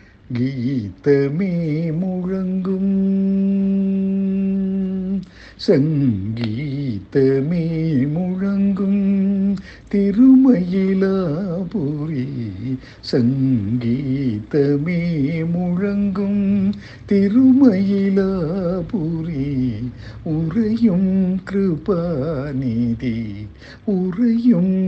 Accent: native